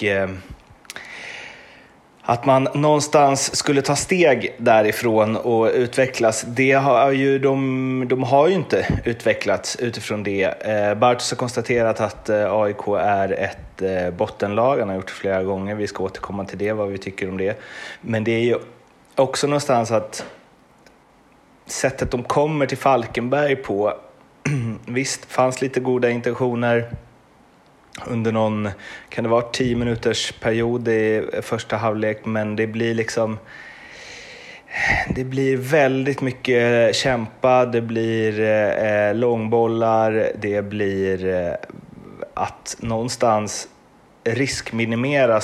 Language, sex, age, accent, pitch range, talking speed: Swedish, male, 30-49, native, 105-130 Hz, 120 wpm